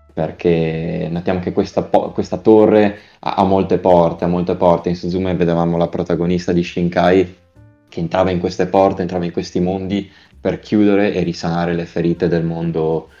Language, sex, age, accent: Italian, male, 20-39, native